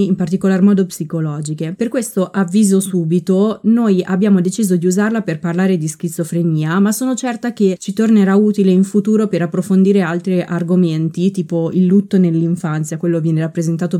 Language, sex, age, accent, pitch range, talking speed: Italian, female, 20-39, native, 170-205 Hz, 160 wpm